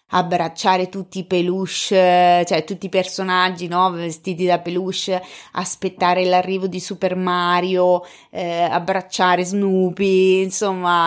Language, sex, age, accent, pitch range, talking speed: Italian, female, 20-39, native, 165-195 Hz, 115 wpm